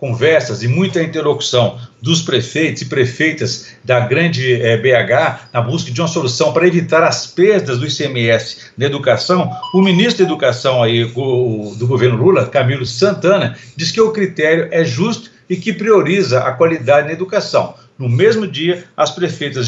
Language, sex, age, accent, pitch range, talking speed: Portuguese, male, 60-79, Brazilian, 130-175 Hz, 165 wpm